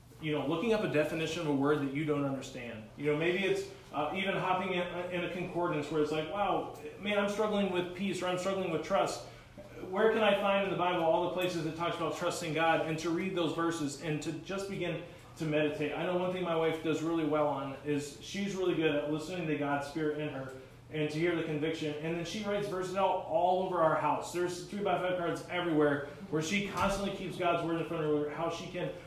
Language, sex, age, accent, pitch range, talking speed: English, male, 30-49, American, 150-180 Hz, 245 wpm